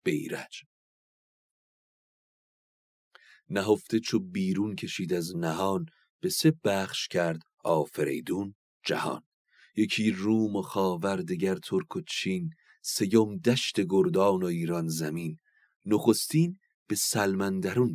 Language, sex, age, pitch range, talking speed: Persian, male, 40-59, 90-125 Hz, 95 wpm